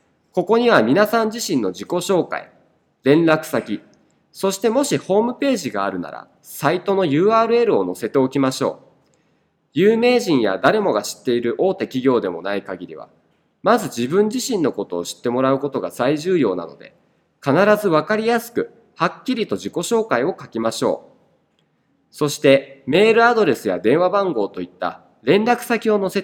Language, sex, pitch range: Japanese, male, 135-205 Hz